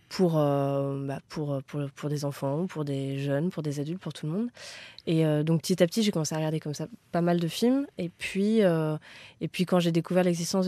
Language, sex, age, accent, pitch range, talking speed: French, female, 20-39, French, 155-185 Hz, 240 wpm